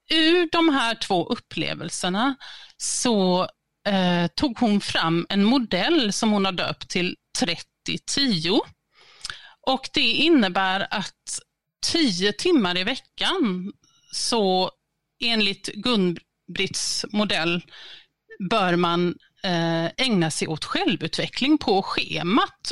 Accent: native